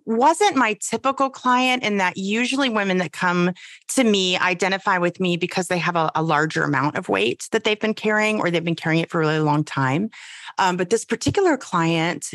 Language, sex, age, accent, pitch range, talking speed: English, female, 30-49, American, 170-230 Hz, 210 wpm